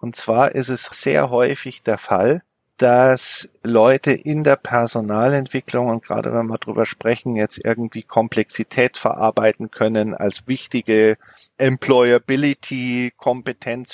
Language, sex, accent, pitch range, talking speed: German, male, German, 110-130 Hz, 115 wpm